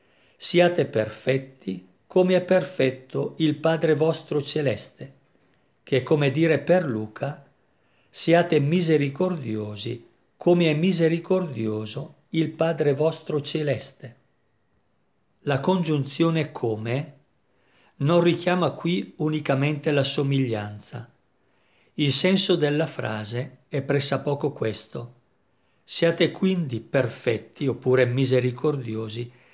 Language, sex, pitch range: Italian, male, 125-165 Hz